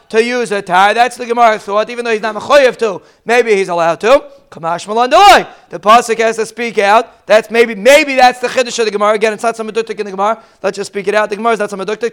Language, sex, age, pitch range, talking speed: English, male, 30-49, 210-255 Hz, 260 wpm